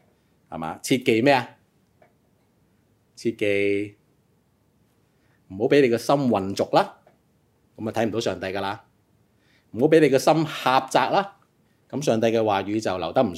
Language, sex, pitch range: Chinese, male, 100-150 Hz